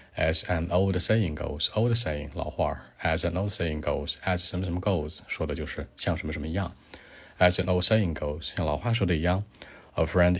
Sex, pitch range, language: male, 75-90 Hz, Chinese